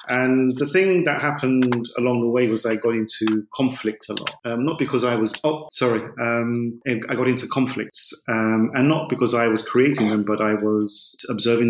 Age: 30-49